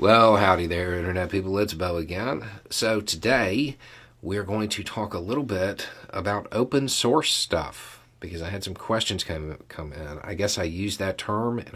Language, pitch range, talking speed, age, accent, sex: English, 90-115 Hz, 185 wpm, 40-59, American, male